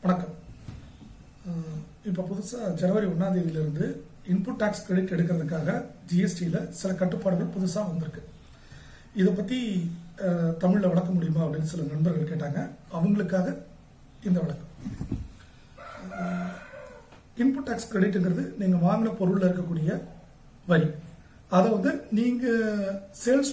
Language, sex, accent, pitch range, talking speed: Tamil, male, native, 170-205 Hz, 100 wpm